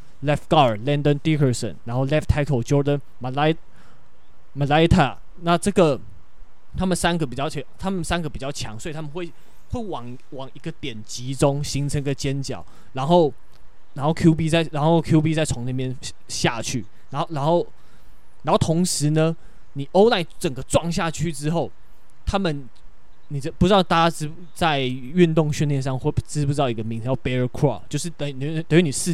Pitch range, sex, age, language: 130-165 Hz, male, 20-39, Chinese